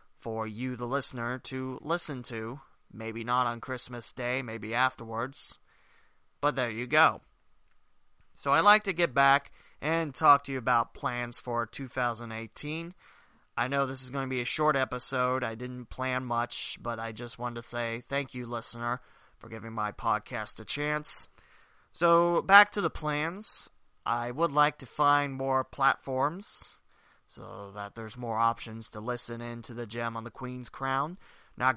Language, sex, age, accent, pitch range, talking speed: English, male, 30-49, American, 115-140 Hz, 170 wpm